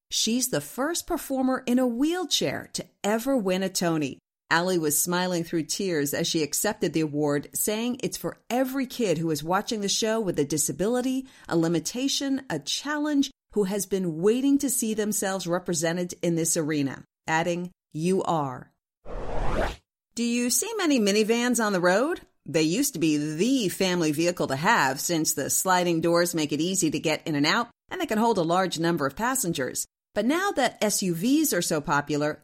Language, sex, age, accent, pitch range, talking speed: English, female, 40-59, American, 165-240 Hz, 180 wpm